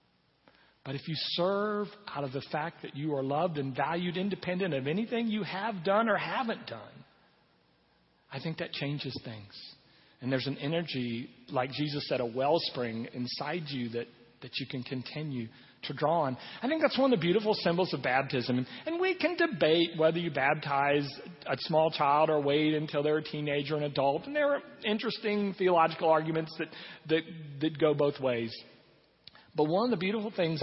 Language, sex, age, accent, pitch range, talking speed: English, male, 40-59, American, 135-170 Hz, 185 wpm